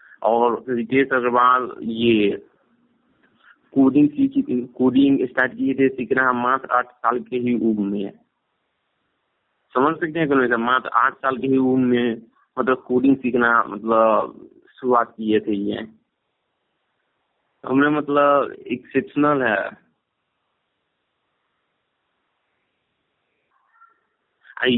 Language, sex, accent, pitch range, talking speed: Hindi, male, native, 120-140 Hz, 80 wpm